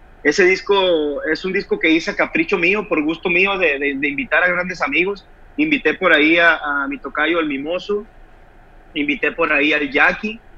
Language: Spanish